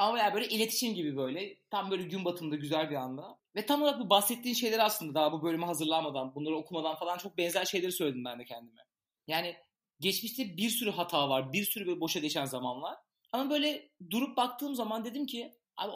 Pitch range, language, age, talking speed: 160-230 Hz, Turkish, 30-49, 205 wpm